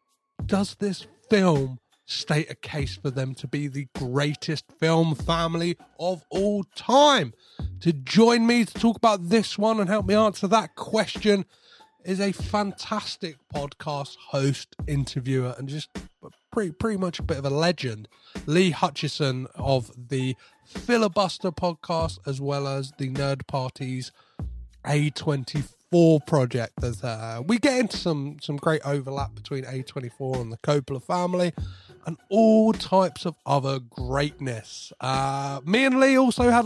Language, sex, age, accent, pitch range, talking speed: English, male, 30-49, British, 135-205 Hz, 145 wpm